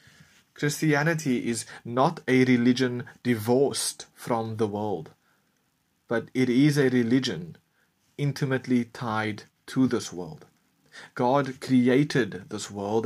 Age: 30-49